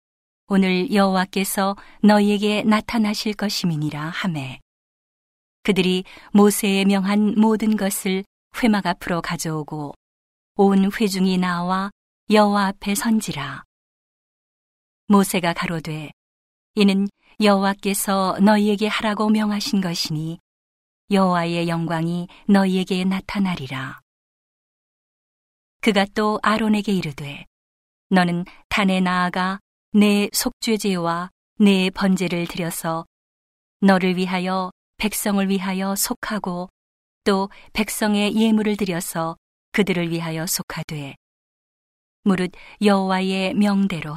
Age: 40-59